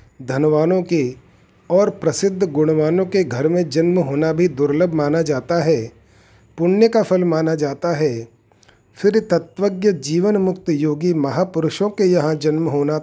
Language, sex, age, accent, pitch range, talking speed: Hindi, male, 40-59, native, 145-185 Hz, 145 wpm